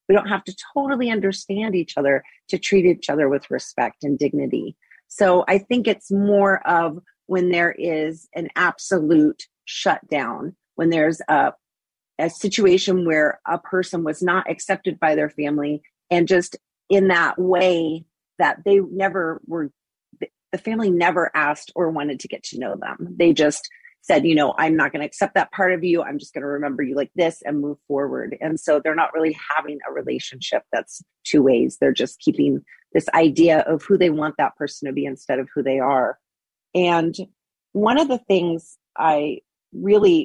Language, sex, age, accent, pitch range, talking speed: English, female, 40-59, American, 155-195 Hz, 185 wpm